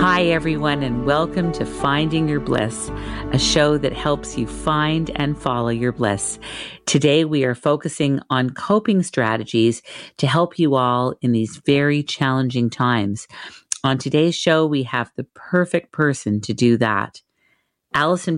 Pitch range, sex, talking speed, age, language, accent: 125-165 Hz, female, 150 wpm, 40-59, English, American